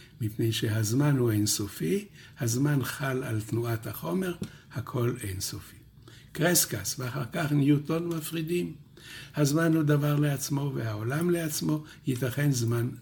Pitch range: 115-145 Hz